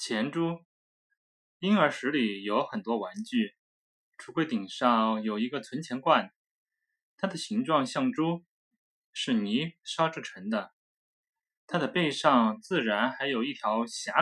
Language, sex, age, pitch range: Chinese, male, 20-39, 140-230 Hz